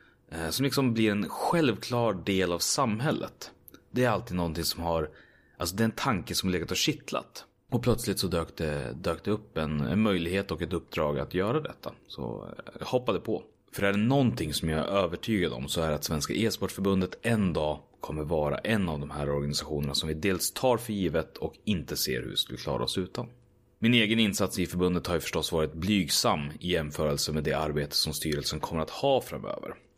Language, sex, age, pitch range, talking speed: Swedish, male, 30-49, 80-110 Hz, 205 wpm